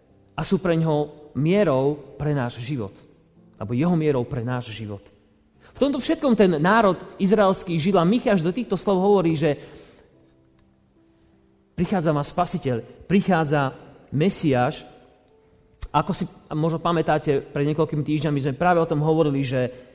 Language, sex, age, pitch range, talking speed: Slovak, male, 30-49, 140-195 Hz, 135 wpm